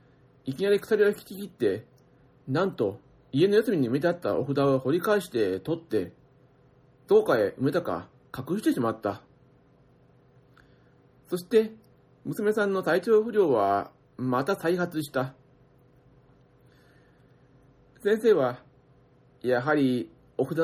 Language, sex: Japanese, male